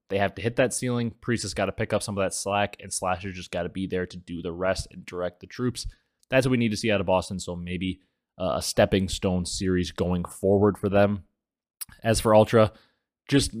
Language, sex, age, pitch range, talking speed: English, male, 20-39, 90-110 Hz, 240 wpm